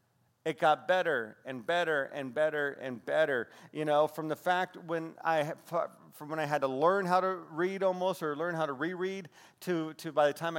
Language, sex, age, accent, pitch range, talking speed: English, male, 40-59, American, 150-195 Hz, 195 wpm